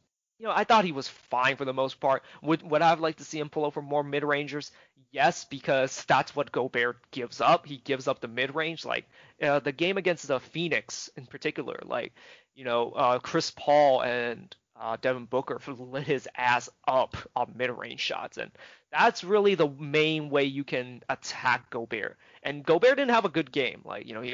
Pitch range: 130-165 Hz